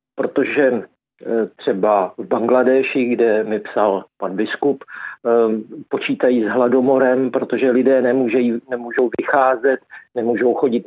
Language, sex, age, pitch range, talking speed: Czech, male, 50-69, 115-130 Hz, 105 wpm